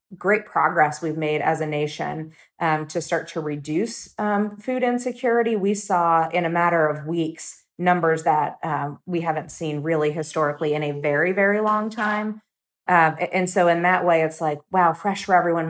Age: 30-49